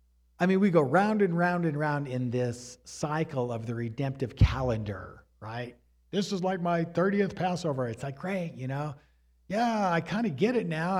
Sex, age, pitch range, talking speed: male, 50-69, 110-175 Hz, 190 wpm